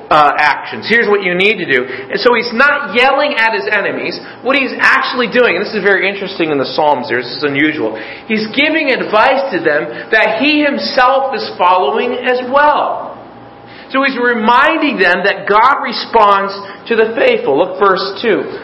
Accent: American